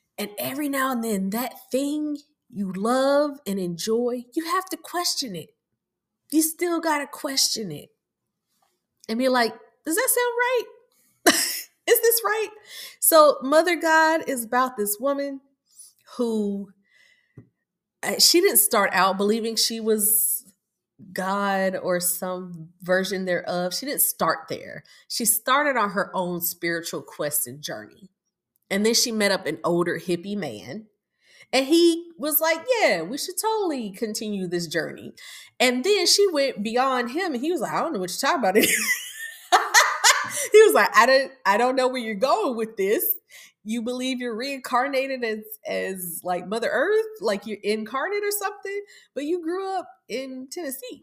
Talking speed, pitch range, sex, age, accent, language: 160 wpm, 200-320 Hz, female, 20-39, American, English